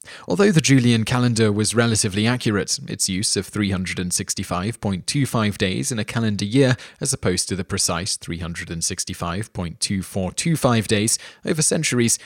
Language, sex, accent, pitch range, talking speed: English, male, British, 95-125 Hz, 120 wpm